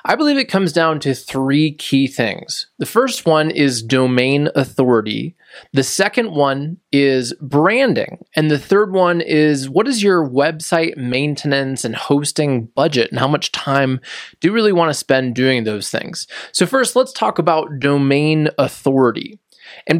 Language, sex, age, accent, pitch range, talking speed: English, male, 20-39, American, 130-160 Hz, 160 wpm